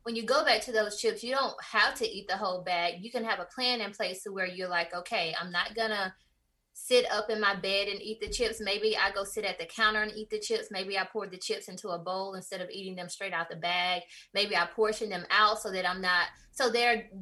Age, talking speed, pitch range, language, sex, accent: 20-39, 270 wpm, 185-220 Hz, English, female, American